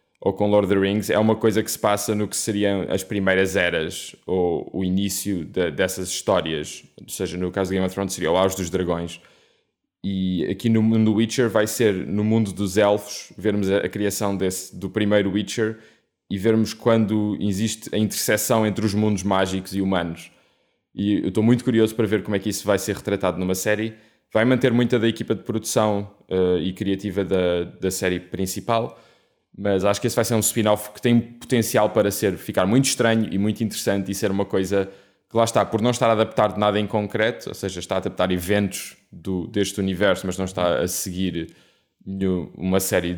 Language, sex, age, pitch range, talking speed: Portuguese, male, 20-39, 95-110 Hz, 200 wpm